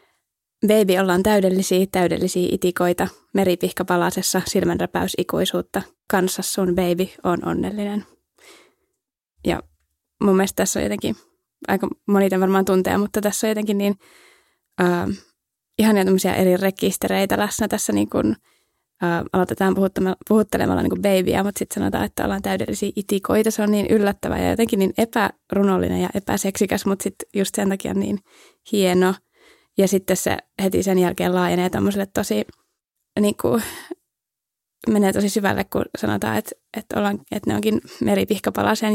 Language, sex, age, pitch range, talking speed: Finnish, female, 20-39, 185-220 Hz, 130 wpm